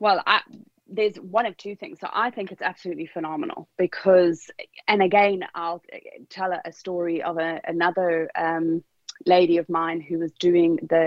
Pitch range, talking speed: 170-200 Hz, 170 wpm